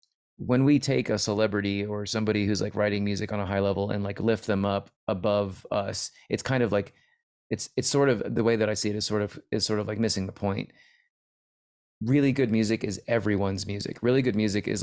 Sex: male